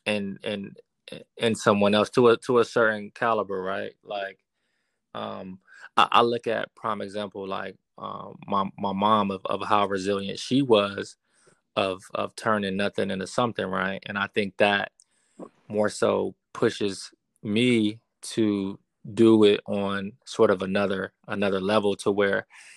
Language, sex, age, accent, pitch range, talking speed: English, male, 20-39, American, 100-110 Hz, 150 wpm